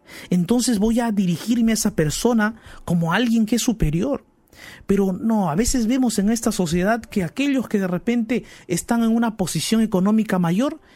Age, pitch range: 50-69, 130-180 Hz